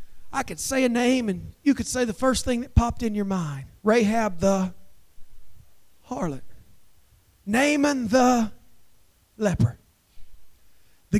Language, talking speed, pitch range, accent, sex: English, 130 wpm, 140-230 Hz, American, male